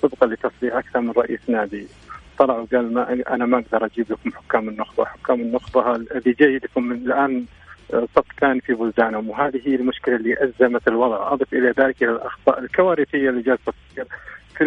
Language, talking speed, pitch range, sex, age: English, 160 wpm, 120-135 Hz, male, 40-59